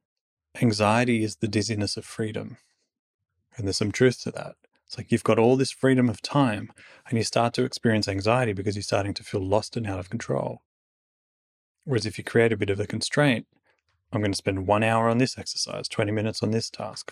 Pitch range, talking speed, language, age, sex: 105-130 Hz, 210 wpm, English, 20-39, male